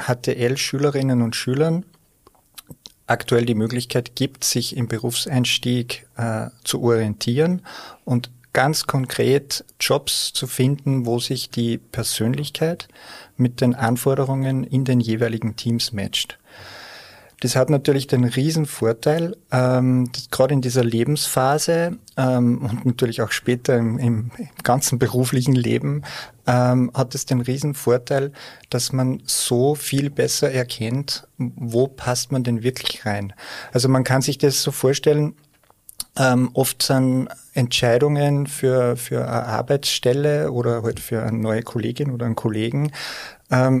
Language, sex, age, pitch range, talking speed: German, male, 40-59, 120-140 Hz, 125 wpm